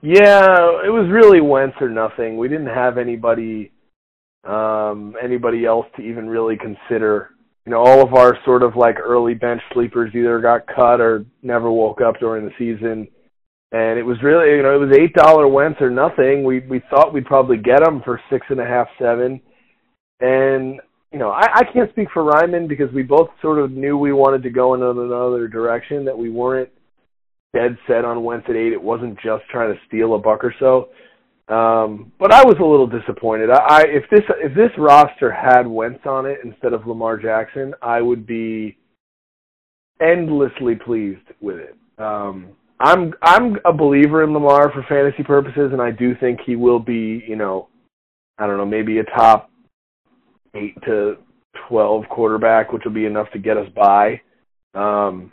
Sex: male